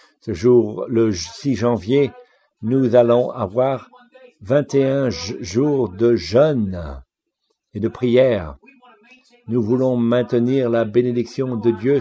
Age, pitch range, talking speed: 50-69, 115-150 Hz, 110 wpm